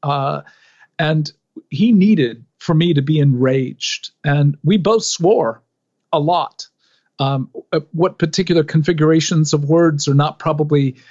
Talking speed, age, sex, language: 130 wpm, 50-69, male, English